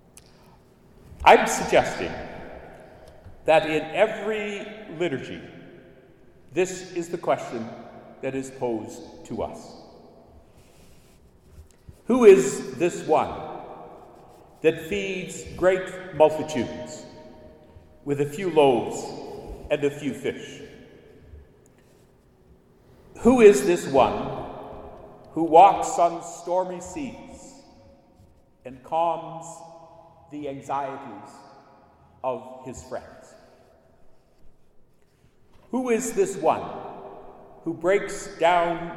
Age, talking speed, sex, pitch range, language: 60-79, 80 wpm, male, 140-180 Hz, English